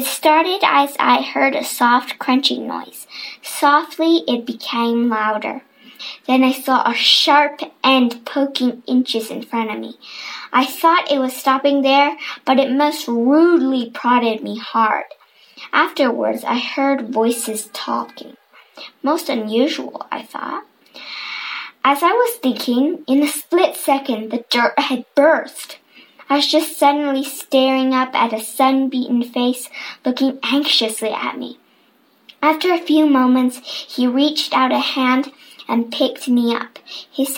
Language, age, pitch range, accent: Chinese, 10-29, 245-290 Hz, American